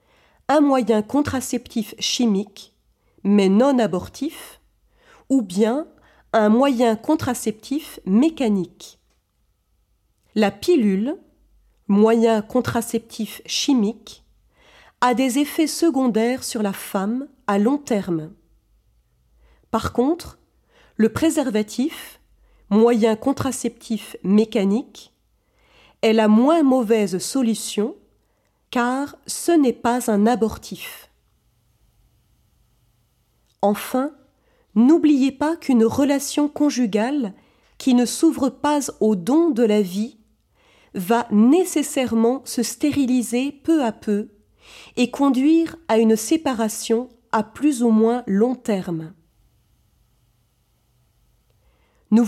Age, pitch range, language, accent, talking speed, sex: 40-59, 210-275 Hz, French, French, 90 wpm, female